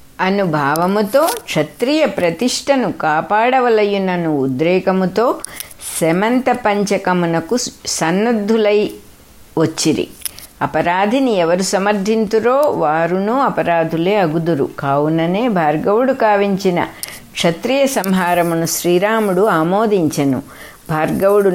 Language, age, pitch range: English, 60-79, 165-215 Hz